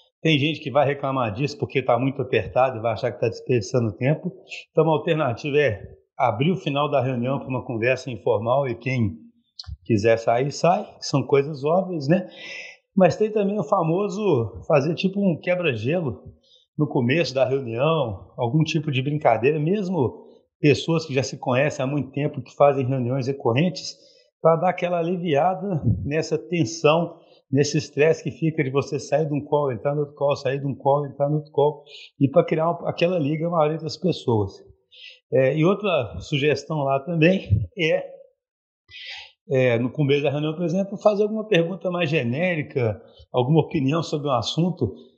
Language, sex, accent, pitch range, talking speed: Portuguese, male, Brazilian, 135-170 Hz, 175 wpm